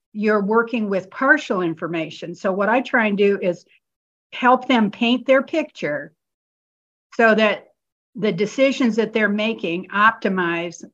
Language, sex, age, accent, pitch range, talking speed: English, female, 50-69, American, 200-250 Hz, 135 wpm